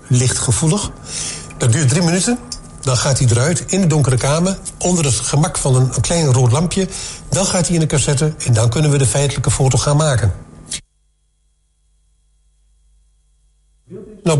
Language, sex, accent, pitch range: Dutch, male, Dutch, 100-165 Hz